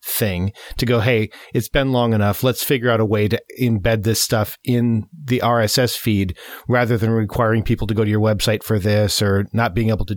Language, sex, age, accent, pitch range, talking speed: English, male, 40-59, American, 110-125 Hz, 220 wpm